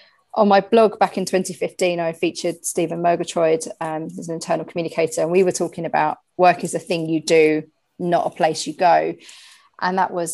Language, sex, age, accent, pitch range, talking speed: English, female, 40-59, British, 165-205 Hz, 195 wpm